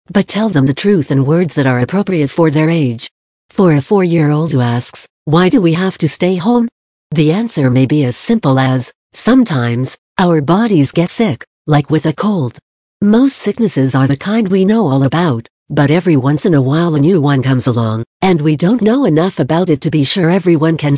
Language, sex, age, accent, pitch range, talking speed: English, female, 60-79, American, 135-180 Hz, 210 wpm